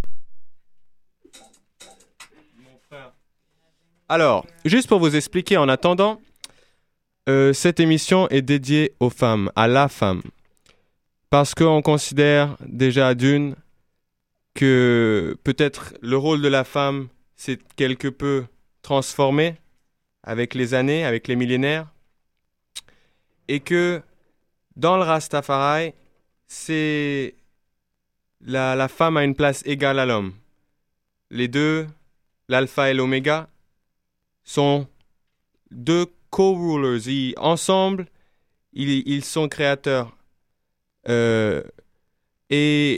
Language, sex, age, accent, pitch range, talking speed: French, male, 20-39, French, 125-155 Hz, 100 wpm